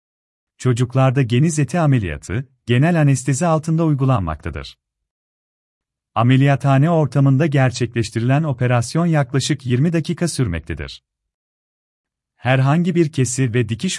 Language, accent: Turkish, native